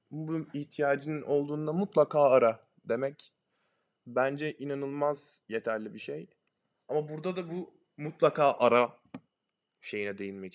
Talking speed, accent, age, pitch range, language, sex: 110 wpm, native, 20-39, 120-165 Hz, Turkish, male